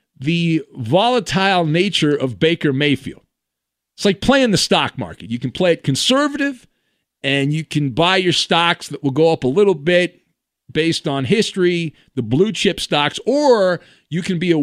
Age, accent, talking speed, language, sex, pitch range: 50-69, American, 170 wpm, English, male, 155-225 Hz